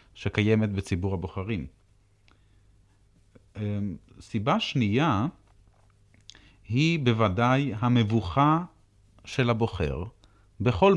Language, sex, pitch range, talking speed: Hebrew, male, 100-125 Hz, 60 wpm